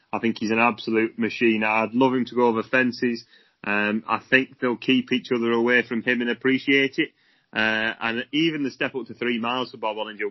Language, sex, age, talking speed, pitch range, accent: English, male, 30-49, 220 wpm, 115-130 Hz, British